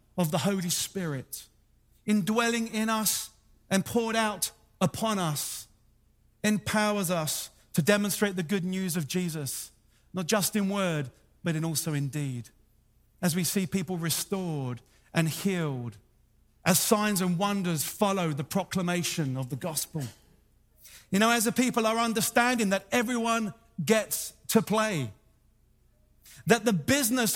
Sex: male